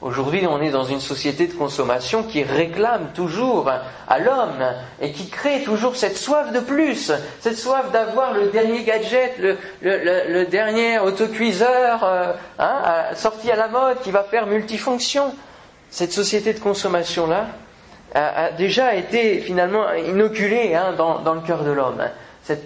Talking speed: 150 wpm